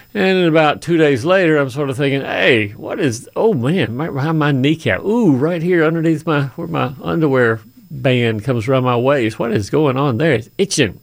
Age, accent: 40-59, American